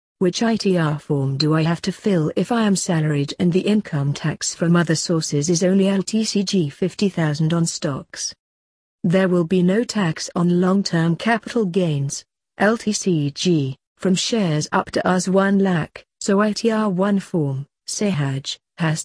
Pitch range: 155-195 Hz